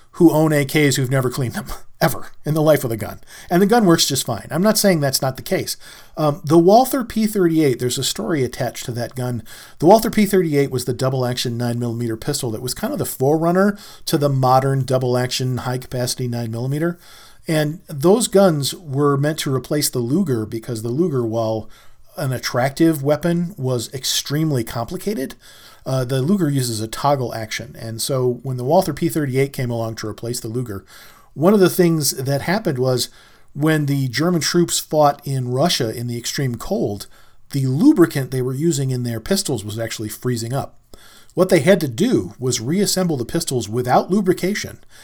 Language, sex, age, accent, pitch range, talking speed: English, male, 40-59, American, 120-170 Hz, 185 wpm